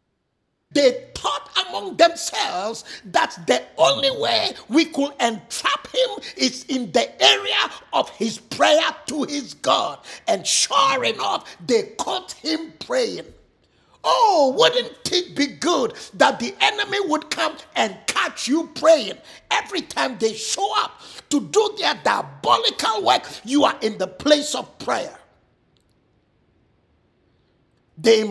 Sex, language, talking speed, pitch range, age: male, English, 130 wpm, 230-340 Hz, 50-69